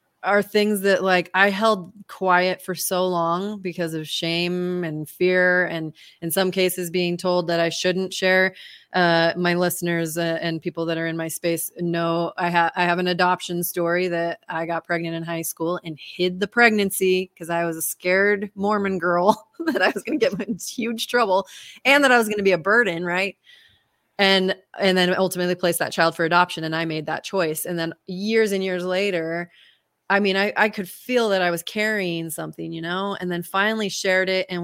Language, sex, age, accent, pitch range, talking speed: English, female, 20-39, American, 170-195 Hz, 210 wpm